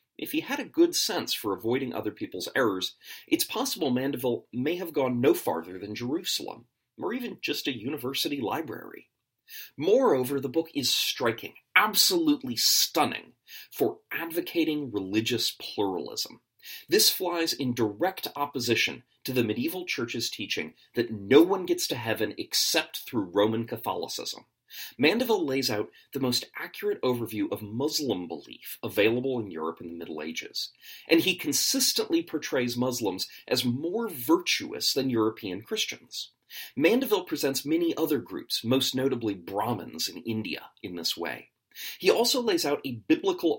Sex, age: male, 30-49